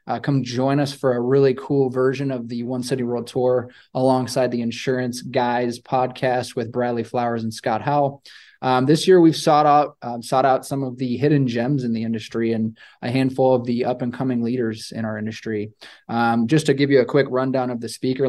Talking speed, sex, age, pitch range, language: 210 wpm, male, 20-39, 115-130 Hz, English